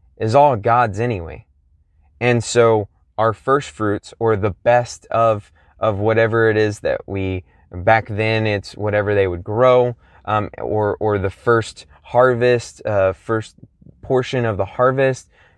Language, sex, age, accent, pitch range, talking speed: English, male, 20-39, American, 100-120 Hz, 145 wpm